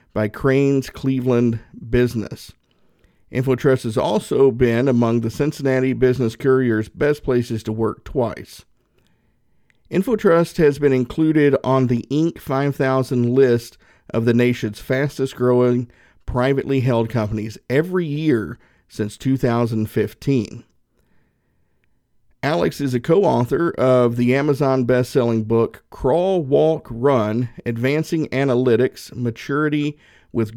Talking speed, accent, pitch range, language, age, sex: 110 wpm, American, 115-140 Hz, English, 50-69, male